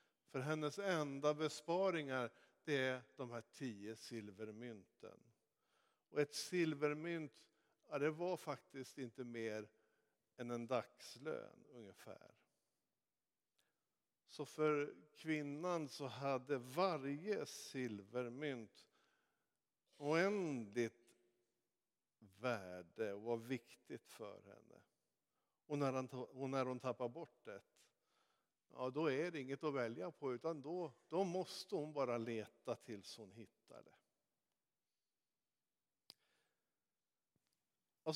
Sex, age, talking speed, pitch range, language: male, 50-69, 95 wpm, 120-155 Hz, Swedish